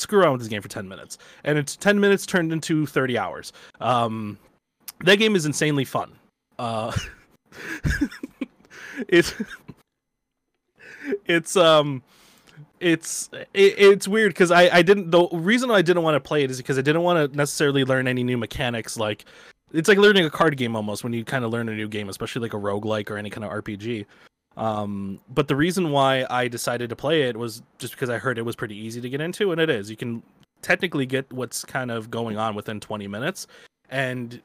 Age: 20-39